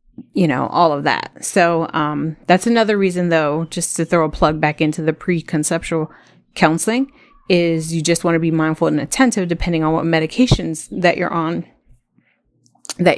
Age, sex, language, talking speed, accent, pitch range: 30-49, female, English, 175 wpm, American, 160-200 Hz